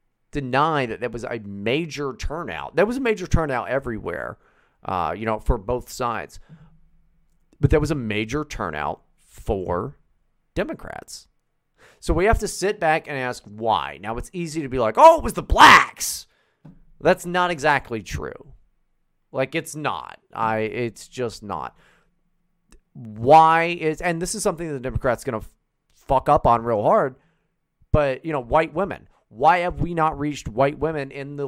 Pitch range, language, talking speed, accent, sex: 125-170 Hz, English, 170 wpm, American, male